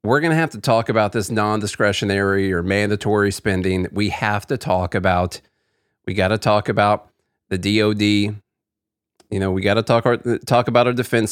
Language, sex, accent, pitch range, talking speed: English, male, American, 105-130 Hz, 185 wpm